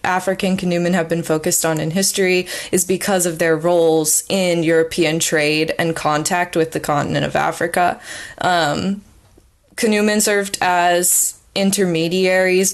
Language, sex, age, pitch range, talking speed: English, female, 20-39, 160-185 Hz, 135 wpm